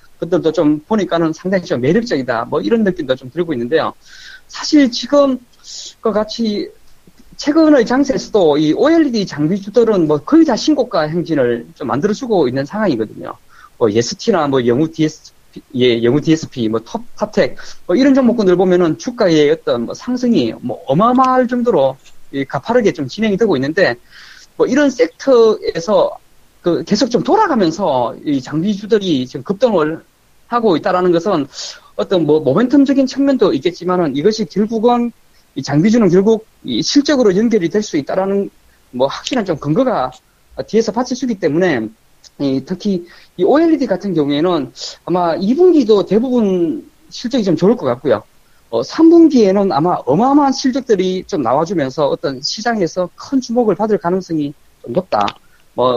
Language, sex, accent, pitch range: Korean, male, native, 165-255 Hz